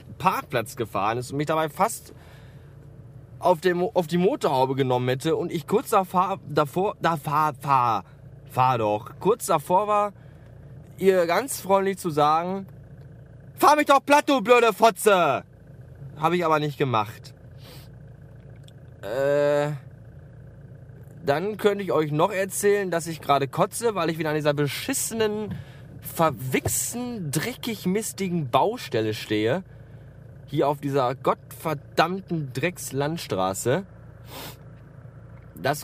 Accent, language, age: German, German, 20-39